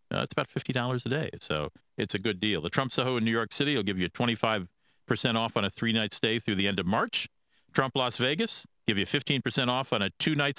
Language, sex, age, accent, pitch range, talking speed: English, male, 50-69, American, 100-140 Hz, 240 wpm